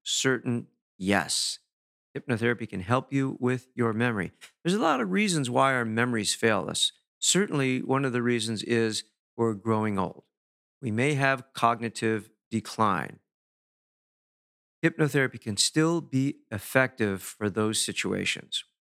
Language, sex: English, male